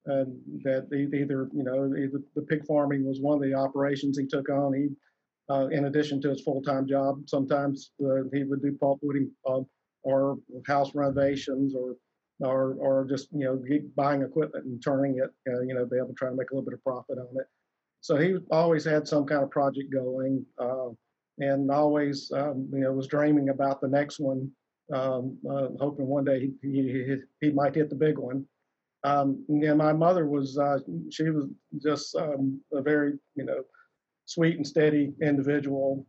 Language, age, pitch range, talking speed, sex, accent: English, 50-69, 135-145 Hz, 195 wpm, male, American